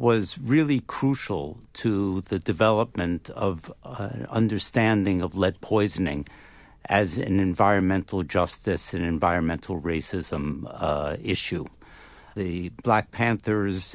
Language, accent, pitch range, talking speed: English, American, 95-120 Hz, 105 wpm